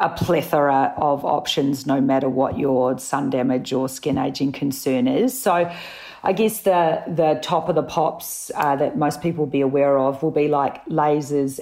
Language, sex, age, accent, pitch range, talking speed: English, female, 40-59, Australian, 140-165 Hz, 185 wpm